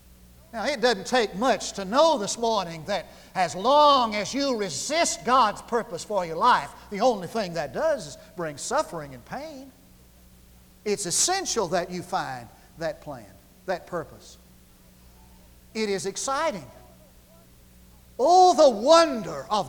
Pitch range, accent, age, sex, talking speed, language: 170-275 Hz, American, 50-69, male, 140 wpm, English